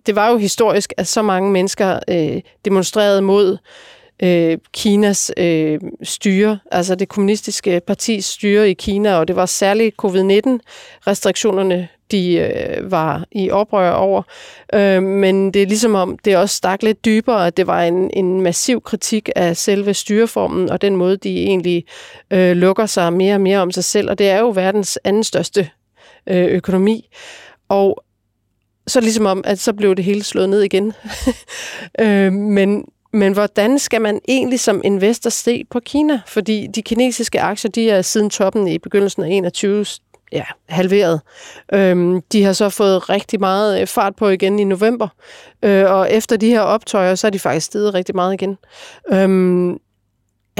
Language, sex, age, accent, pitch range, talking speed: Danish, female, 30-49, native, 185-220 Hz, 170 wpm